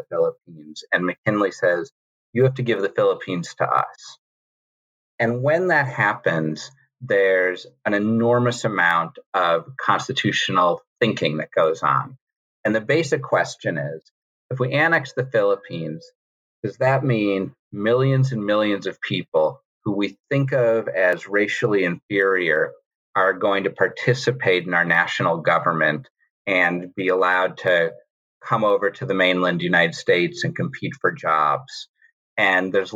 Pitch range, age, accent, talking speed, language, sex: 95-135 Hz, 40-59, American, 140 wpm, English, male